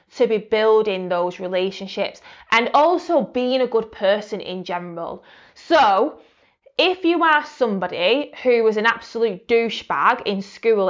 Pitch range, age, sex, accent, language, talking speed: 195-275 Hz, 20-39, female, British, English, 140 wpm